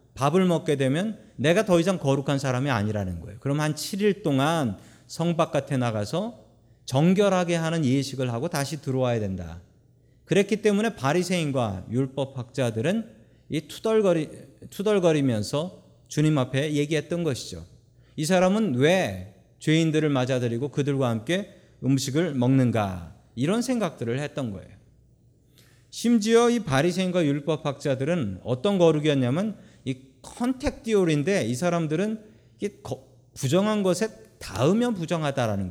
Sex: male